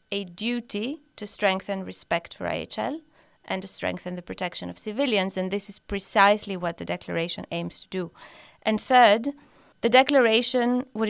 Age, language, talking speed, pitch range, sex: 30-49, English, 155 wpm, 195-245 Hz, female